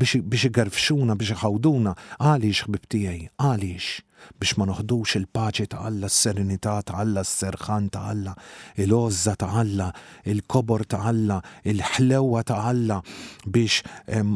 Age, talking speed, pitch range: 40-59, 95 wpm, 110-140 Hz